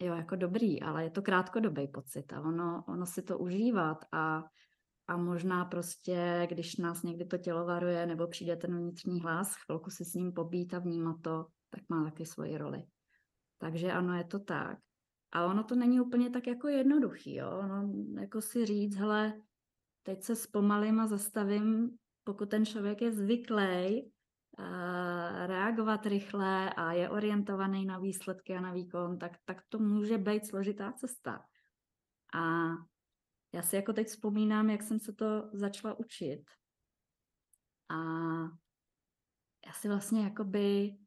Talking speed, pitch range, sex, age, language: 150 wpm, 170-210 Hz, female, 20-39, Czech